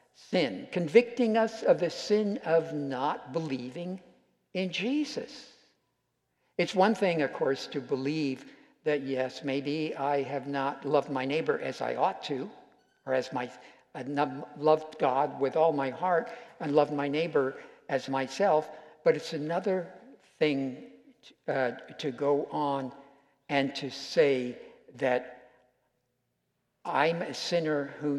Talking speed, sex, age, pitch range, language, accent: 135 wpm, male, 60-79, 135-180 Hz, English, American